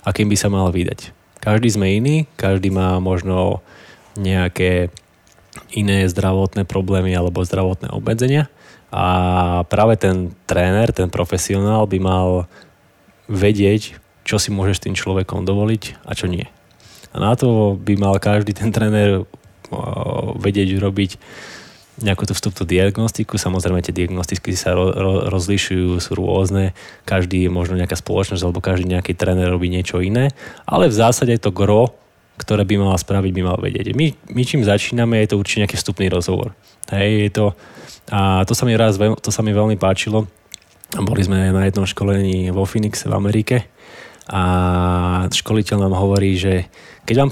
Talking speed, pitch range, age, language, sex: 155 wpm, 95-110 Hz, 20-39, Slovak, male